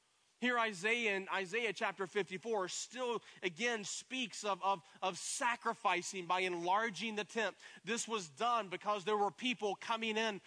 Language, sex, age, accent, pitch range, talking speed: English, male, 30-49, American, 185-230 Hz, 155 wpm